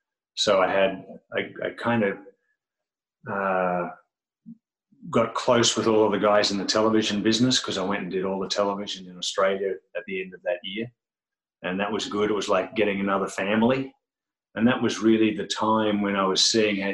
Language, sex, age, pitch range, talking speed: English, male, 30-49, 90-120 Hz, 200 wpm